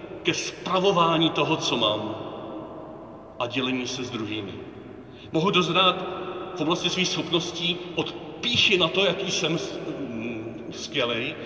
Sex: male